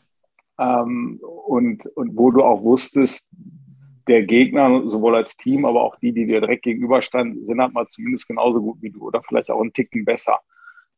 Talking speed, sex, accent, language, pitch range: 190 wpm, male, German, German, 110-135 Hz